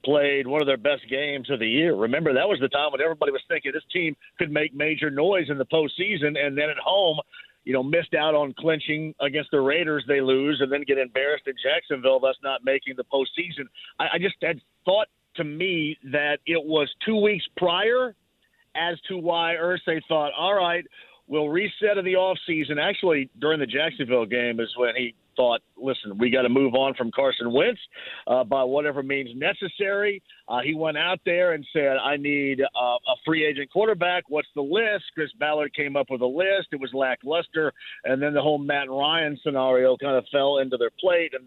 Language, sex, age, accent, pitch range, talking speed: English, male, 50-69, American, 135-175 Hz, 205 wpm